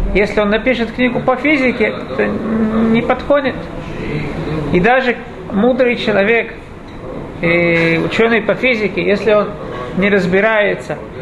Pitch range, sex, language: 205-270 Hz, male, Russian